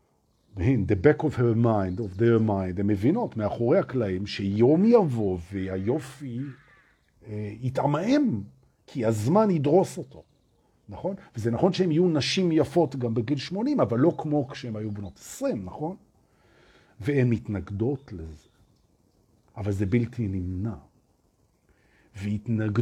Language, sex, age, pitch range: Hebrew, male, 50-69, 105-155 Hz